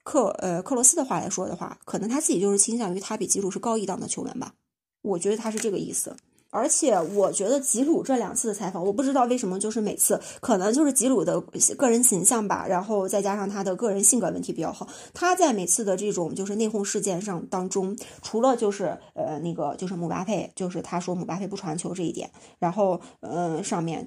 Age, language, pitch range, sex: 20-39, Chinese, 185-230 Hz, female